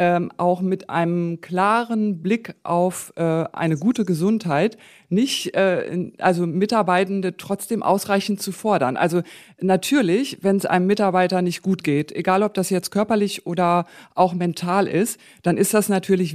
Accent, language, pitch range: German, German, 170-200 Hz